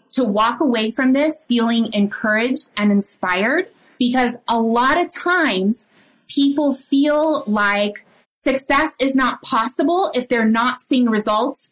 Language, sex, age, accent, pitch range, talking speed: English, female, 20-39, American, 215-290 Hz, 135 wpm